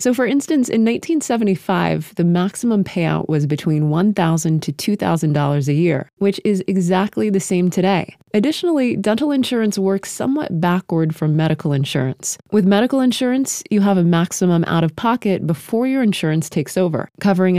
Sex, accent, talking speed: female, American, 155 wpm